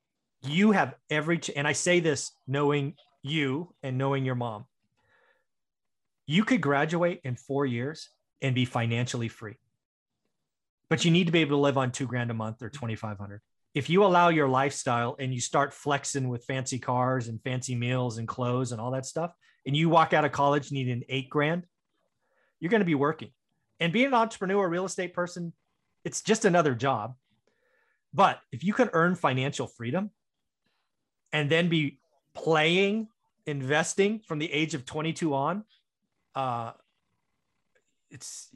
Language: English